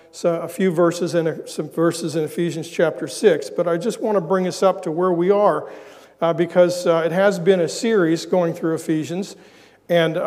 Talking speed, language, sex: 205 wpm, English, male